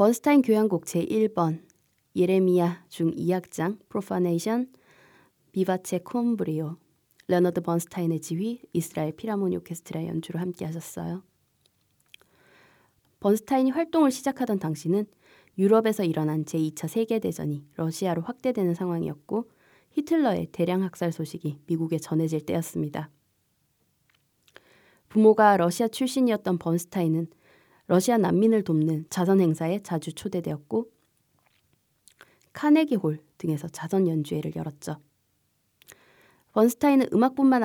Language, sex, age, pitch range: Korean, female, 20-39, 160-215 Hz